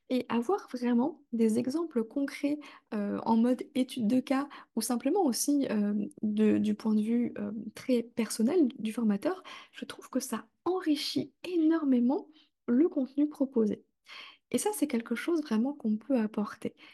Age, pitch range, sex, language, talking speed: 20-39, 225-290 Hz, female, French, 150 wpm